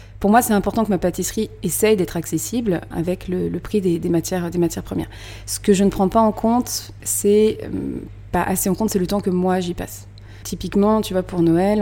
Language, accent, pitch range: French, French, 170-195 Hz